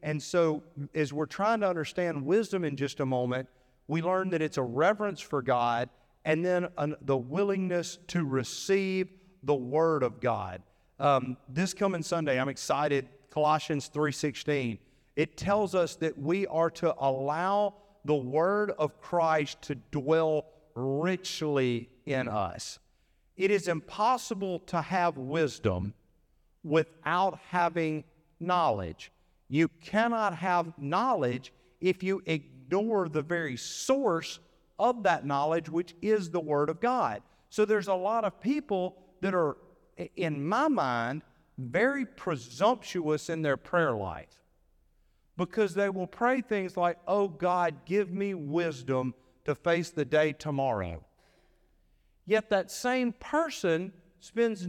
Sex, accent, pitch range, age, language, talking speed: male, American, 140-190 Hz, 50-69, English, 135 wpm